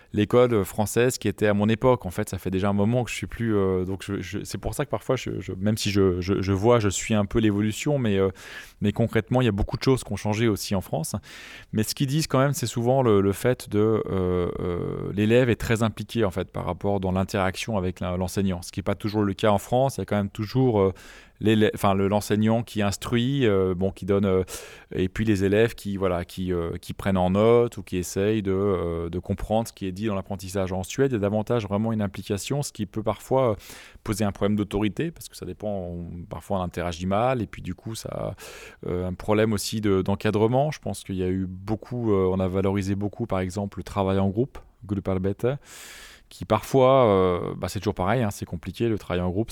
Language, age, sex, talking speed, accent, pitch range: French, 20-39, male, 245 wpm, French, 95-115 Hz